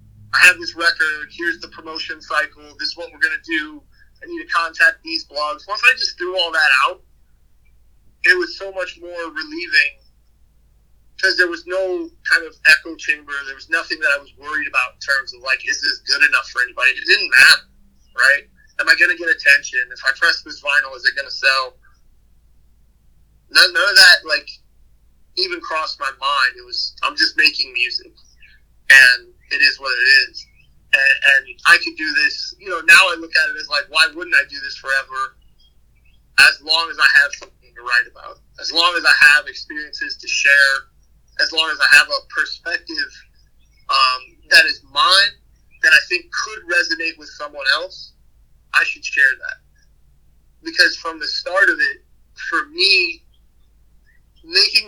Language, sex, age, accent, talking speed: English, male, 30-49, American, 185 wpm